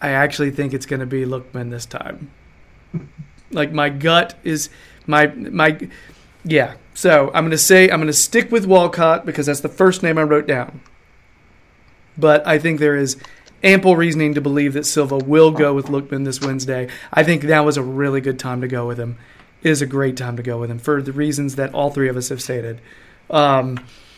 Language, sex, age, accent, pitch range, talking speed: English, male, 30-49, American, 135-165 Hz, 205 wpm